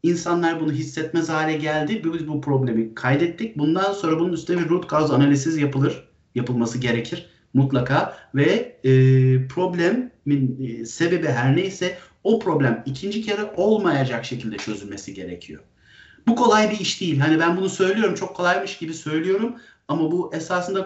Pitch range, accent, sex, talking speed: 135-170 Hz, native, male, 150 wpm